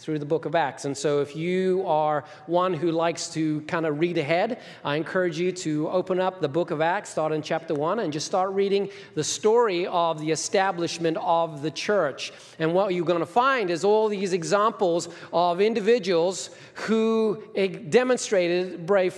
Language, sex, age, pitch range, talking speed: English, male, 40-59, 165-215 Hz, 185 wpm